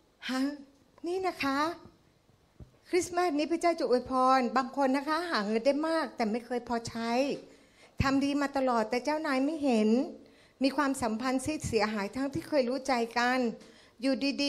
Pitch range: 215-270 Hz